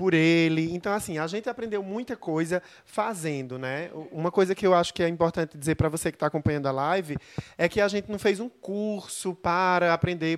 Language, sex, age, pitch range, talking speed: Portuguese, male, 20-39, 160-195 Hz, 215 wpm